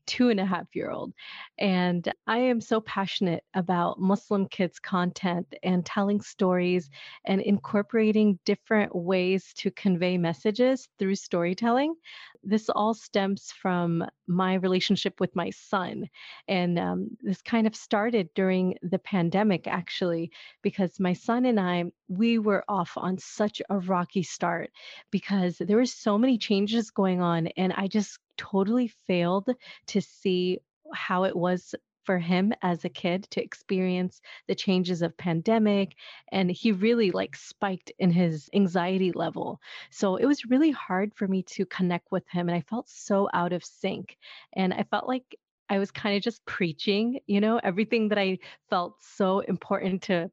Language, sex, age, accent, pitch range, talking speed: English, female, 30-49, American, 180-215 Hz, 160 wpm